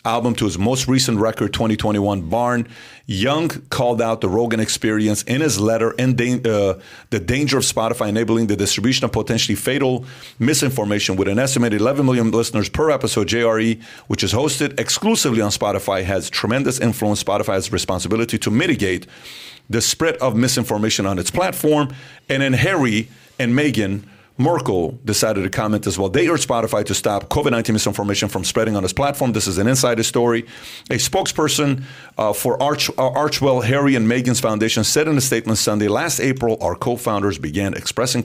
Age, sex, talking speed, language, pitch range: 40-59, male, 175 wpm, English, 105-130 Hz